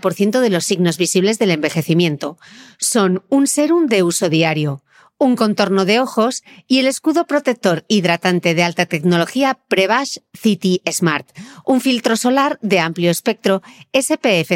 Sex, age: female, 40-59